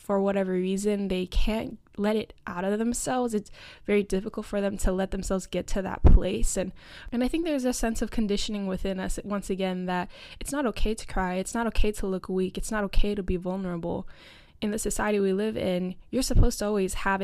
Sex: female